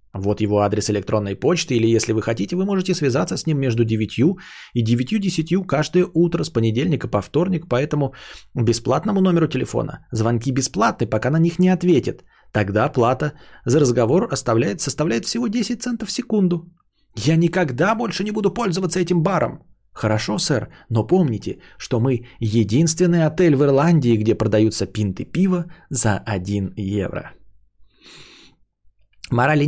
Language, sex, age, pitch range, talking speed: Bulgarian, male, 20-39, 105-160 Hz, 145 wpm